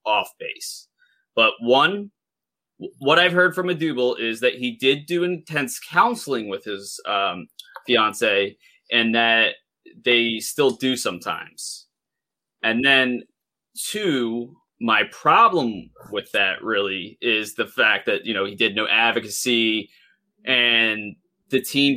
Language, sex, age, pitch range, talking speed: English, male, 20-39, 115-135 Hz, 130 wpm